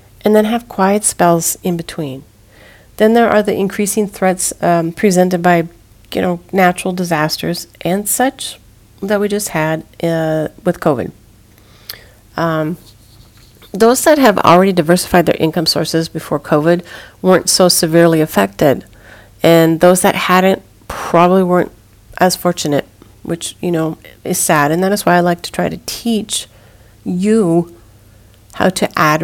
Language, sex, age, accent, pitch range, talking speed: English, female, 40-59, American, 150-190 Hz, 145 wpm